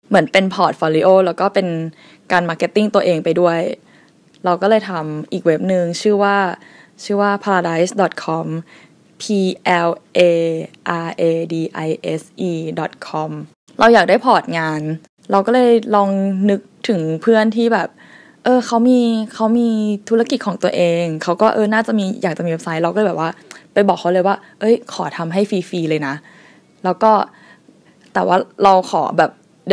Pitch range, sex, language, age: 165-220 Hz, female, Thai, 10-29